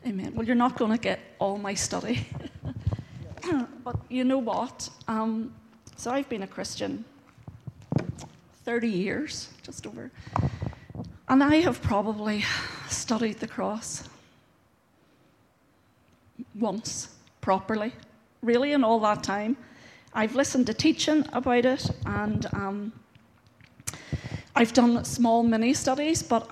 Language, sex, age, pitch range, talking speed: English, female, 40-59, 215-245 Hz, 115 wpm